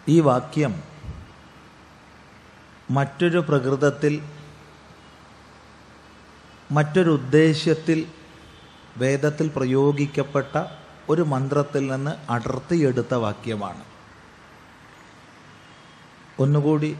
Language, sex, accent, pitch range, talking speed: Malayalam, male, native, 125-160 Hz, 50 wpm